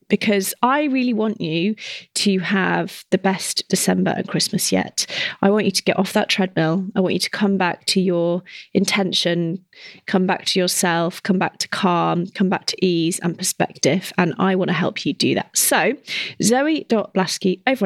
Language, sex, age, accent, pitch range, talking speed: English, female, 30-49, British, 175-210 Hz, 185 wpm